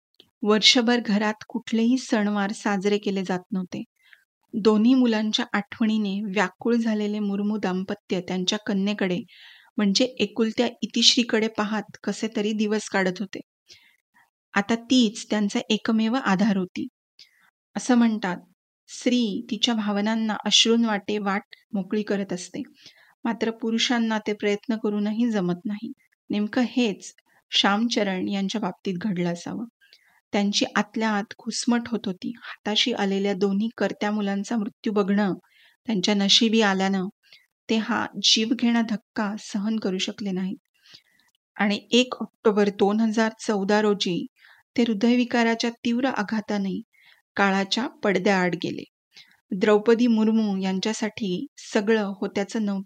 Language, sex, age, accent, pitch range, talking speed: Marathi, female, 30-49, native, 200-230 Hz, 110 wpm